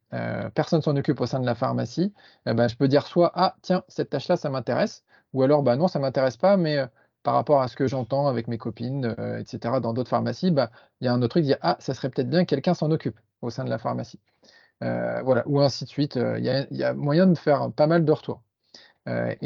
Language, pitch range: French, 120-150 Hz